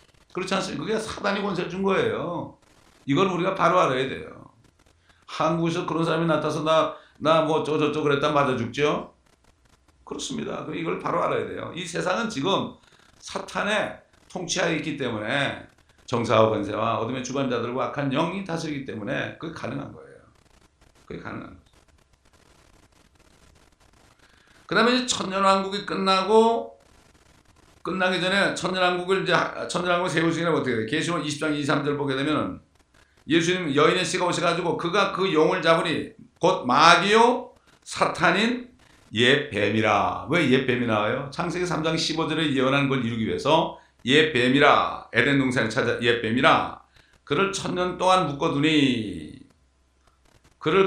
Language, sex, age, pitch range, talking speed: English, male, 60-79, 130-180 Hz, 115 wpm